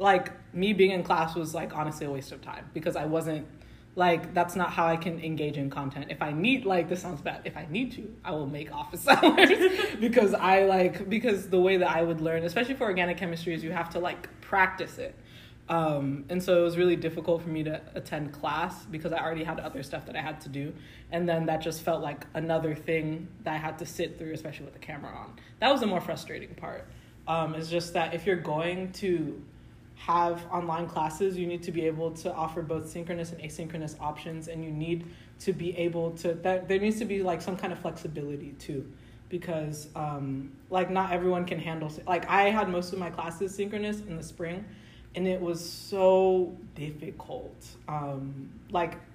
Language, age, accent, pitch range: English, 20-39, American, 155-180 Hz